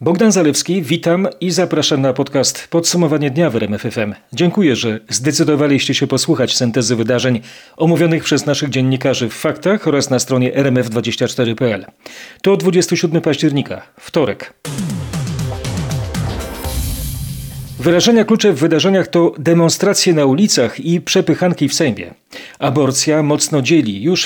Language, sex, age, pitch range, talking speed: Polish, male, 40-59, 130-170 Hz, 120 wpm